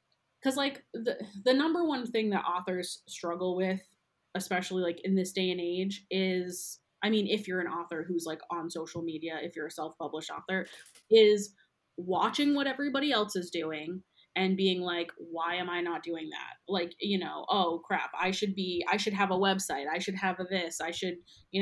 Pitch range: 175-205 Hz